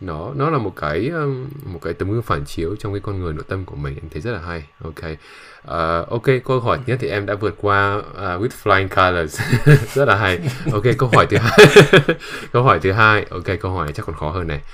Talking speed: 245 wpm